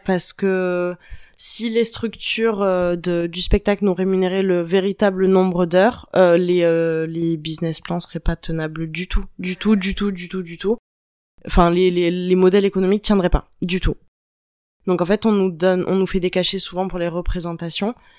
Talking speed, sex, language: 190 wpm, female, French